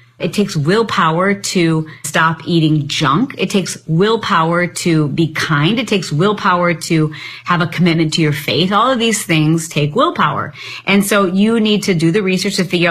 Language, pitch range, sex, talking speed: English, 150-205 Hz, female, 180 wpm